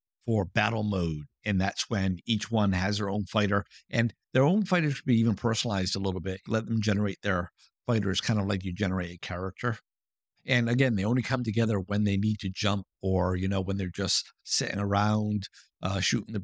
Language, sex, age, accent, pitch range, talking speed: English, male, 50-69, American, 95-120 Hz, 210 wpm